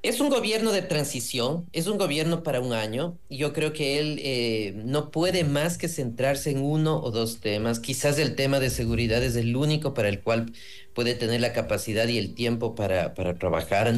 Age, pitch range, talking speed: 40-59, 105-145 Hz, 205 wpm